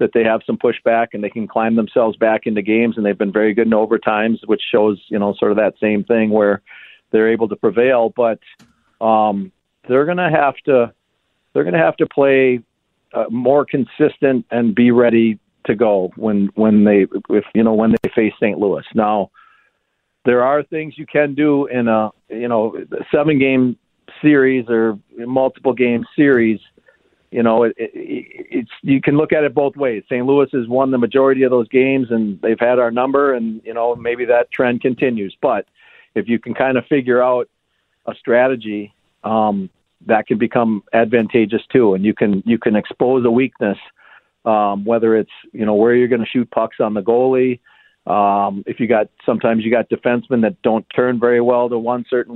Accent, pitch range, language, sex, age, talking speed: American, 110-130 Hz, English, male, 50-69, 195 wpm